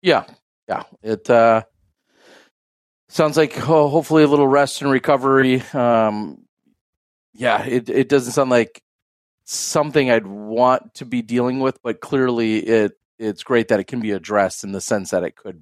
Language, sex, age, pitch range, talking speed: English, male, 40-59, 105-135 Hz, 165 wpm